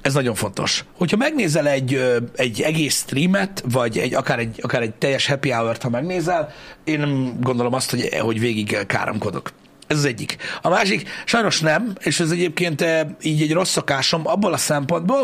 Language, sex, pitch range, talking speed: Hungarian, male, 130-170 Hz, 175 wpm